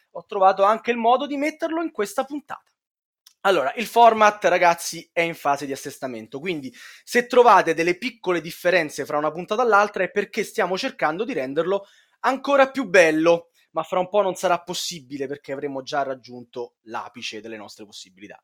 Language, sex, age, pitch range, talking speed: Italian, male, 20-39, 150-235 Hz, 175 wpm